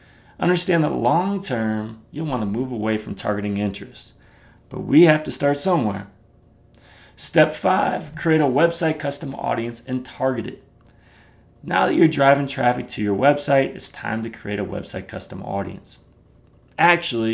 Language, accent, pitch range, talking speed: English, American, 105-135 Hz, 150 wpm